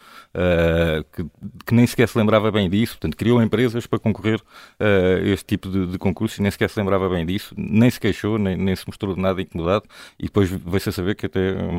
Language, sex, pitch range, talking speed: Portuguese, male, 95-110 Hz, 240 wpm